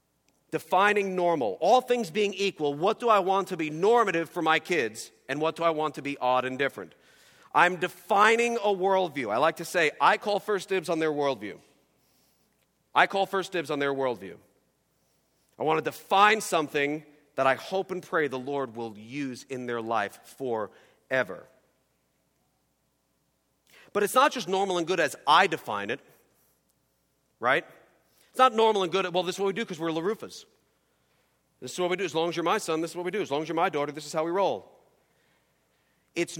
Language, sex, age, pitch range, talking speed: English, male, 40-59, 145-195 Hz, 200 wpm